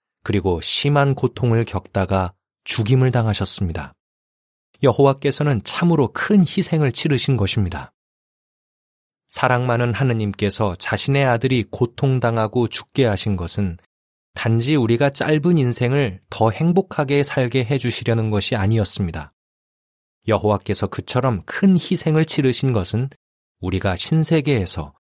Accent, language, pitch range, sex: native, Korean, 100-135 Hz, male